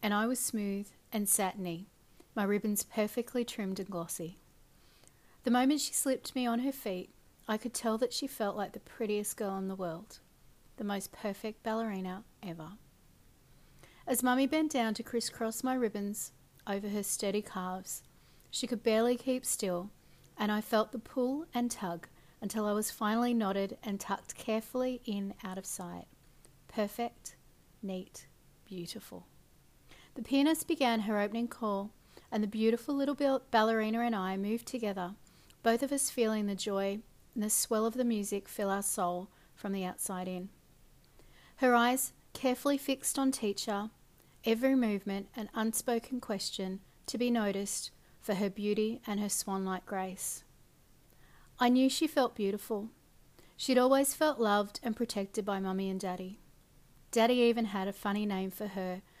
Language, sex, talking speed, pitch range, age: English, female, 155 wpm, 195-240 Hz, 40-59